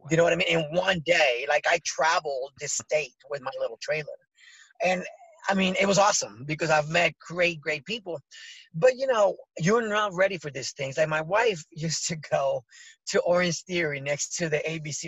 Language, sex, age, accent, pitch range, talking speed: English, male, 30-49, American, 165-245 Hz, 205 wpm